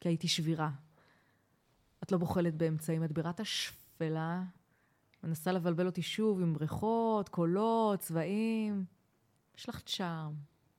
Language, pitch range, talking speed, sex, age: Hebrew, 175-250 Hz, 115 wpm, female, 20-39